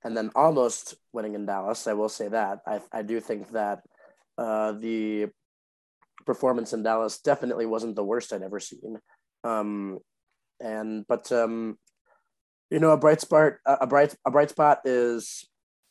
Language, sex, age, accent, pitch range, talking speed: English, male, 20-39, American, 105-125 Hz, 160 wpm